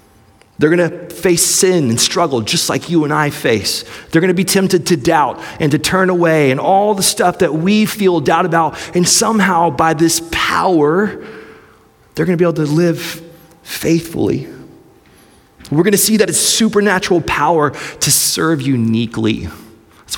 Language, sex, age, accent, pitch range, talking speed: English, male, 30-49, American, 110-165 Hz, 175 wpm